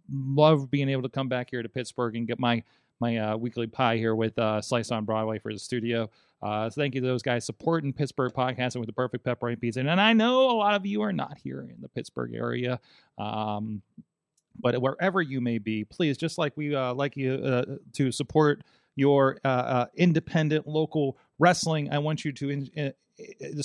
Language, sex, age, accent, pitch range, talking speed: English, male, 30-49, American, 115-140 Hz, 215 wpm